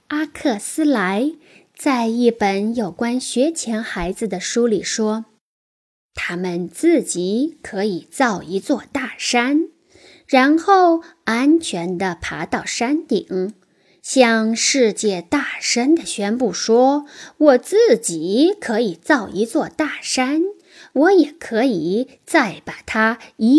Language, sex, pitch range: Chinese, female, 210-305 Hz